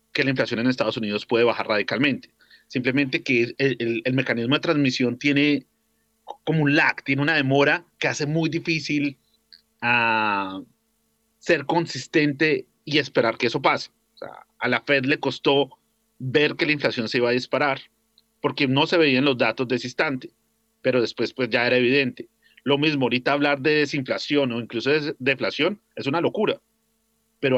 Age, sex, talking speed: 40-59, male, 175 wpm